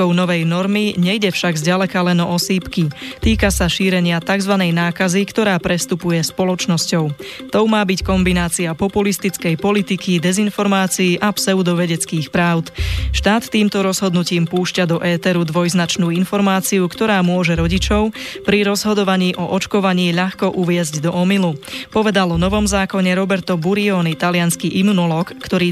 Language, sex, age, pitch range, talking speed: Slovak, female, 20-39, 175-195 Hz, 125 wpm